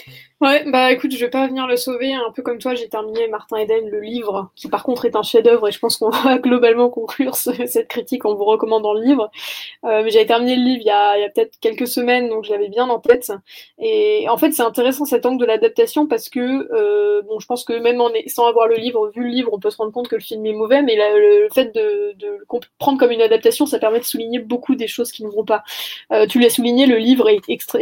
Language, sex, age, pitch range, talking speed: French, female, 20-39, 220-275 Hz, 280 wpm